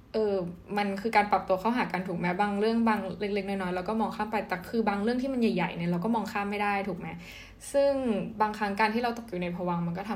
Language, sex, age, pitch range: Thai, female, 10-29, 190-225 Hz